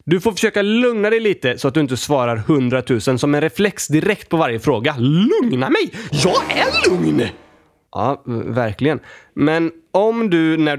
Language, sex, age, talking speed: Swedish, male, 20-39, 165 wpm